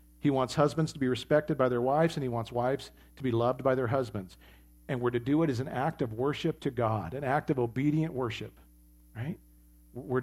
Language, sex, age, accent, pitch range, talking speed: English, male, 50-69, American, 115-140 Hz, 225 wpm